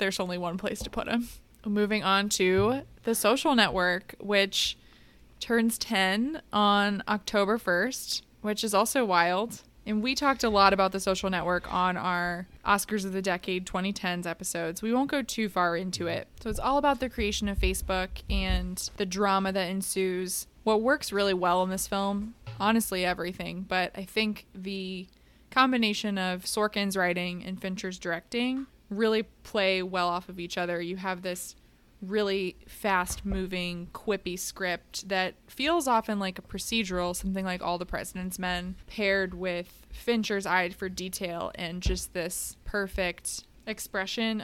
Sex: female